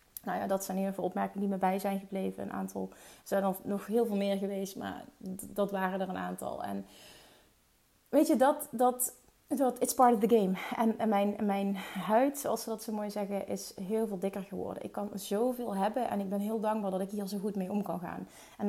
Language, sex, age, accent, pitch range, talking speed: Dutch, female, 30-49, Dutch, 190-230 Hz, 230 wpm